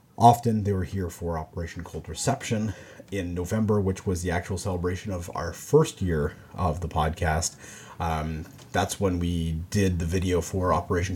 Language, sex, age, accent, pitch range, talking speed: English, male, 30-49, American, 90-110 Hz, 165 wpm